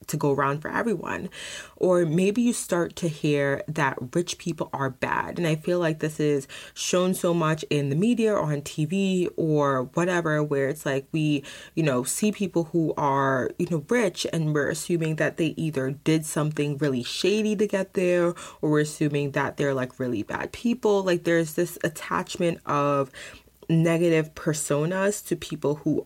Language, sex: English, female